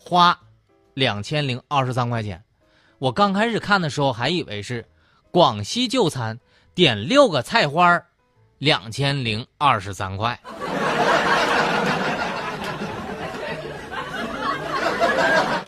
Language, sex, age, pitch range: Chinese, male, 20-39, 120-185 Hz